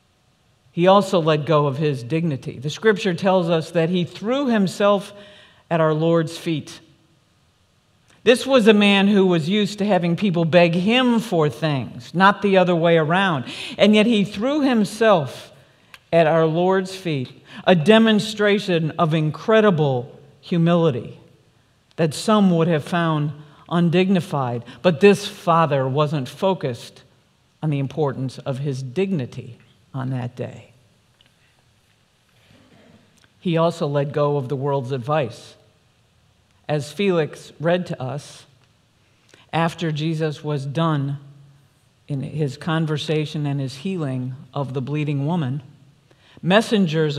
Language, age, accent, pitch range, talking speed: English, 50-69, American, 140-180 Hz, 125 wpm